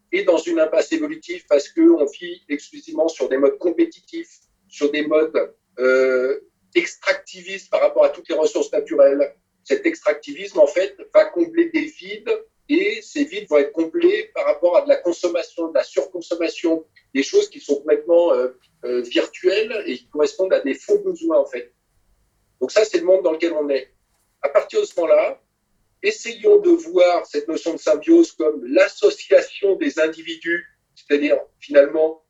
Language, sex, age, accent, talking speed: French, male, 50-69, French, 170 wpm